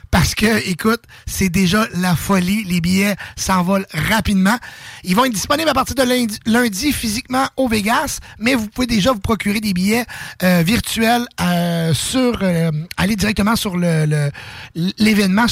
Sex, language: male, English